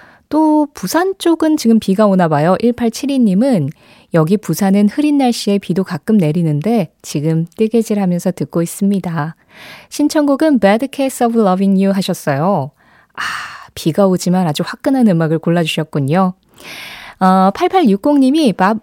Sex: female